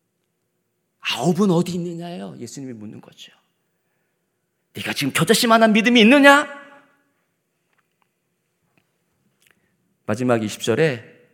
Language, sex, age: Korean, male, 40-59